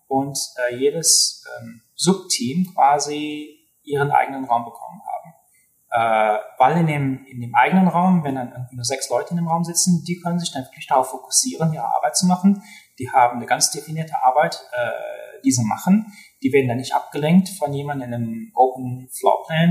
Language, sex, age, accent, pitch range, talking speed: German, male, 30-49, German, 130-180 Hz, 185 wpm